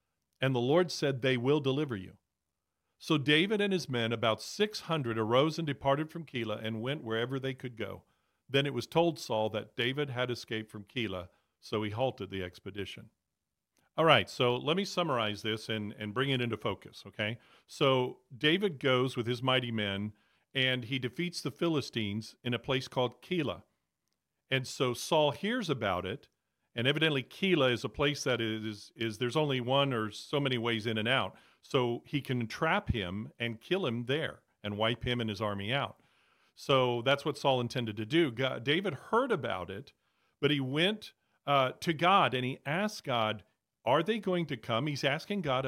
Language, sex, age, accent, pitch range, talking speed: English, male, 40-59, American, 115-145 Hz, 190 wpm